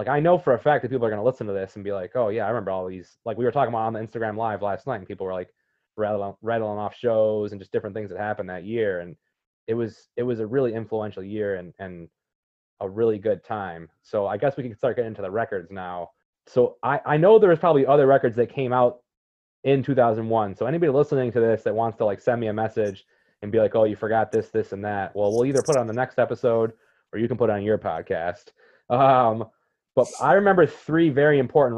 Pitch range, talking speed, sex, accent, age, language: 105-125 Hz, 255 wpm, male, American, 20-39, English